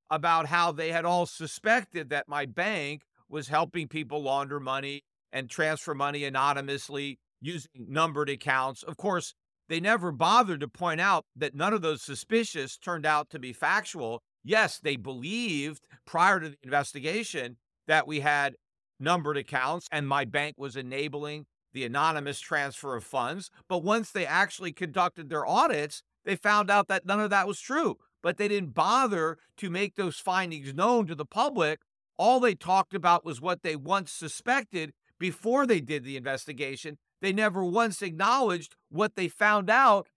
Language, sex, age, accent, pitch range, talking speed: English, male, 50-69, American, 150-195 Hz, 165 wpm